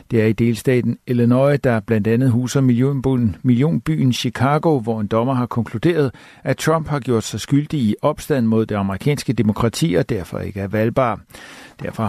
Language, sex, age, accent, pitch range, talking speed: Danish, male, 60-79, native, 110-135 Hz, 170 wpm